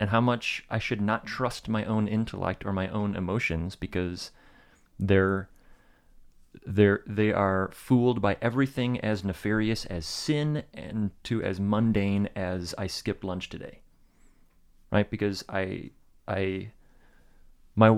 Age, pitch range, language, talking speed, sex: 30-49, 90-110 Hz, English, 135 wpm, male